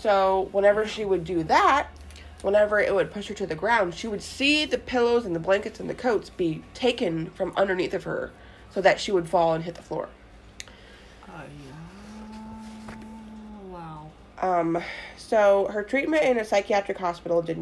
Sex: female